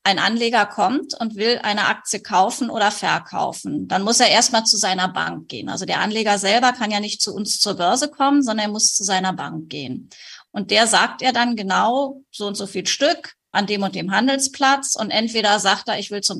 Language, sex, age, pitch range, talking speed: German, female, 30-49, 200-250 Hz, 220 wpm